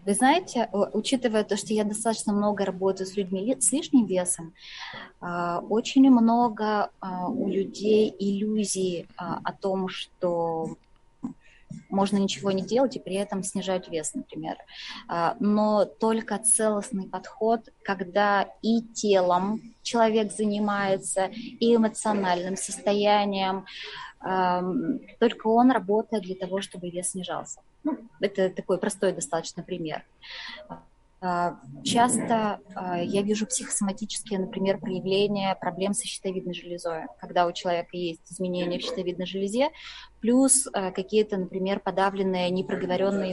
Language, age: Russian, 20-39